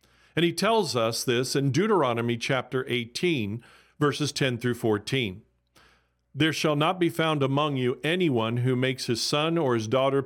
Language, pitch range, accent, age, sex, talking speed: English, 120-165 Hz, American, 50-69, male, 165 wpm